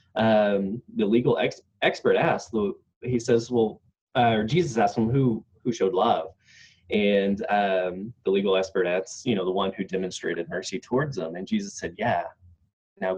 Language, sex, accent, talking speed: English, male, American, 175 wpm